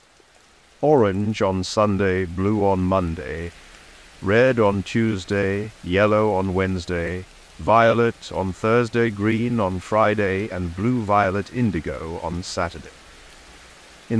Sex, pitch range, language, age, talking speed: male, 85-115 Hz, English, 50-69, 100 wpm